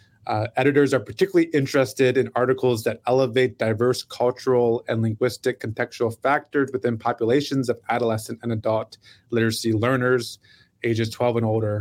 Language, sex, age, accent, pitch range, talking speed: English, male, 30-49, American, 110-130 Hz, 135 wpm